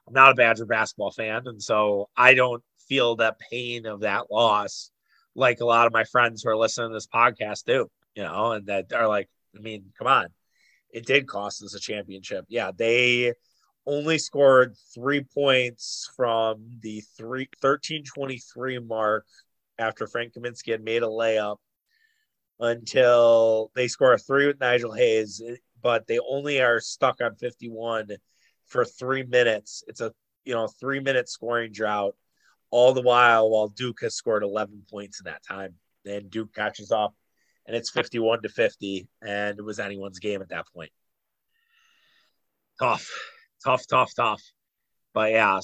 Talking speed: 160 wpm